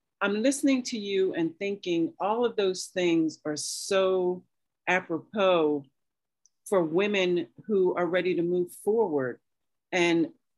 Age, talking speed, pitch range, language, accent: 40-59, 125 wpm, 165-210 Hz, English, American